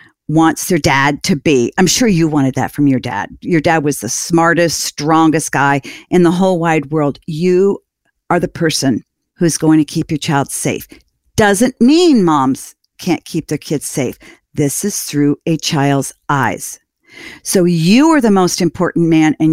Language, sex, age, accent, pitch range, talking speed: English, female, 50-69, American, 145-175 Hz, 180 wpm